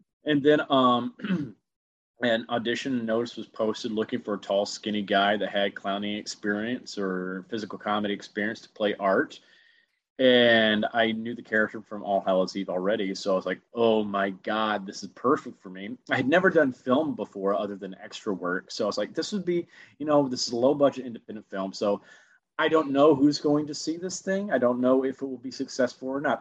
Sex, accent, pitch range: male, American, 105-150 Hz